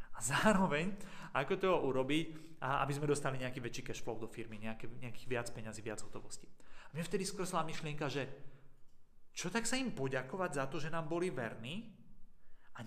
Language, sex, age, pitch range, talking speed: Slovak, male, 30-49, 130-180 Hz, 175 wpm